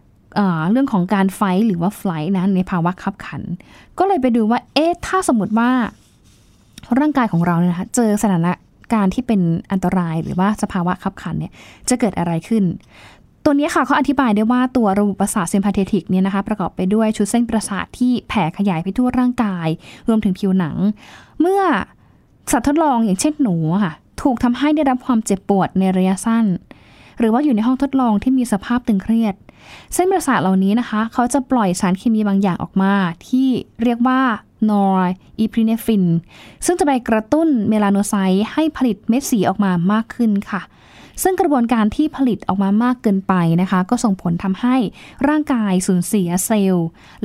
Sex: female